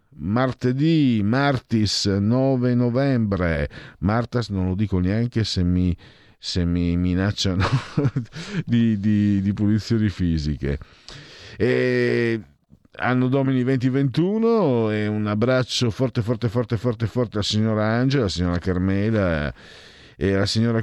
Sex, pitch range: male, 85-110 Hz